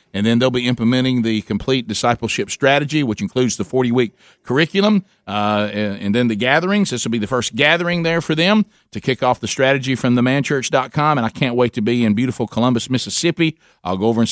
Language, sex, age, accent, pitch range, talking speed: English, male, 50-69, American, 110-135 Hz, 210 wpm